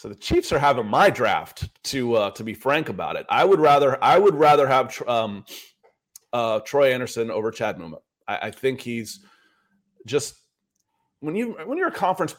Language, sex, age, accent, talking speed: English, male, 30-49, American, 195 wpm